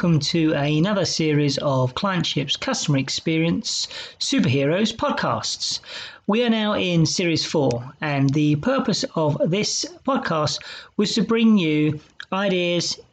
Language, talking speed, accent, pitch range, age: English, 125 wpm, British, 150-205 Hz, 40-59